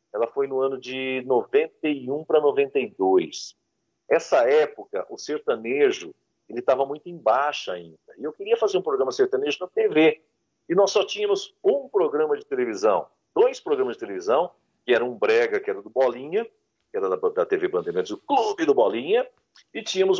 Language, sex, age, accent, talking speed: Portuguese, male, 50-69, Brazilian, 170 wpm